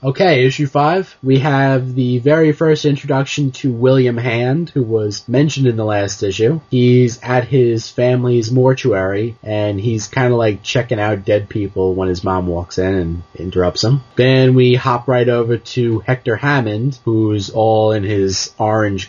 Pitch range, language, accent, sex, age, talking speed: 105-130 Hz, English, American, male, 20-39, 170 wpm